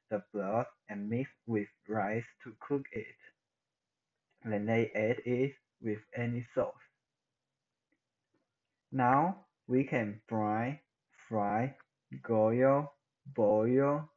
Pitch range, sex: 115-140 Hz, male